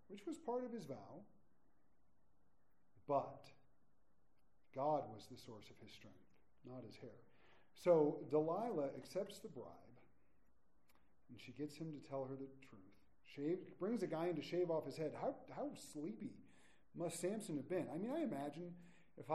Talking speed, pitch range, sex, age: 160 wpm, 135-180 Hz, male, 40-59